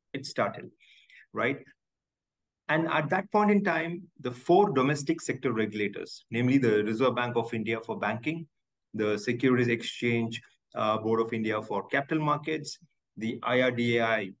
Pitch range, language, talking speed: 115-150 Hz, English, 135 wpm